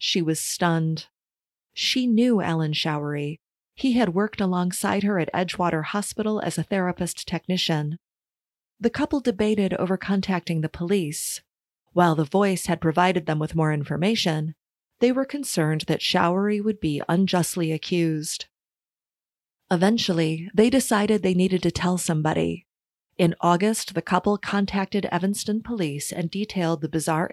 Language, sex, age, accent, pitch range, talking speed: English, female, 30-49, American, 160-205 Hz, 140 wpm